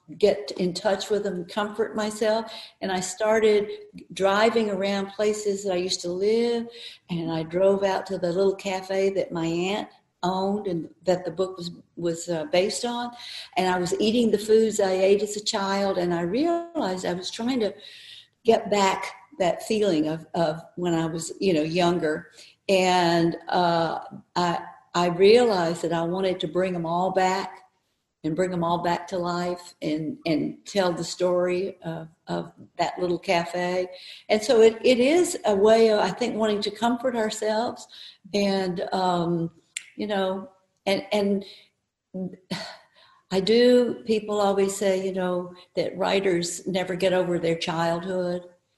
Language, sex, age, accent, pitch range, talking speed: English, female, 50-69, American, 175-205 Hz, 160 wpm